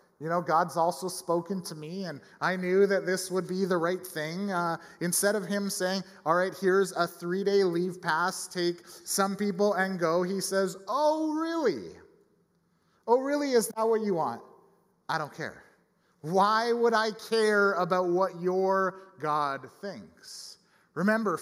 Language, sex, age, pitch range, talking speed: English, male, 30-49, 160-200 Hz, 160 wpm